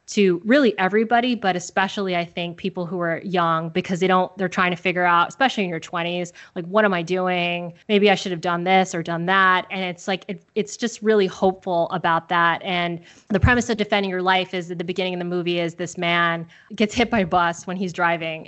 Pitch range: 175-195 Hz